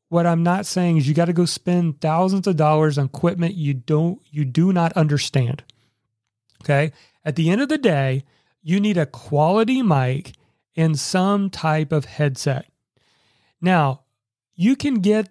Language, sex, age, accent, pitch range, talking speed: English, male, 40-59, American, 145-180 Hz, 165 wpm